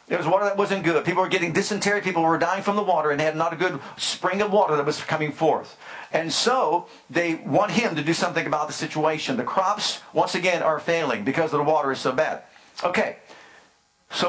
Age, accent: 50-69, American